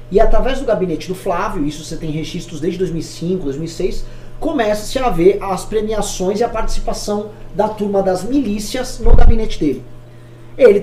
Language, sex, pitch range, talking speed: Portuguese, male, 145-225 Hz, 160 wpm